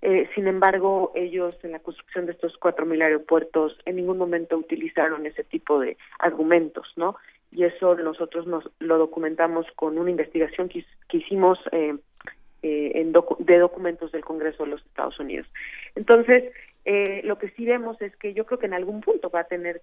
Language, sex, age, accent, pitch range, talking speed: Spanish, female, 40-59, Mexican, 165-205 Hz, 185 wpm